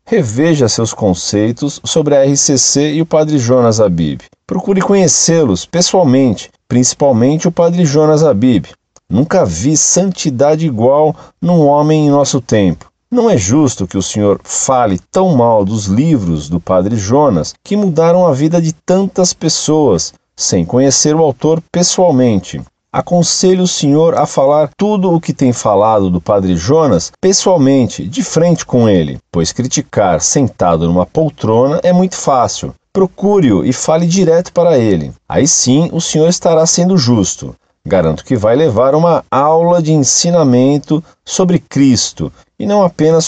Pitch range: 125-175 Hz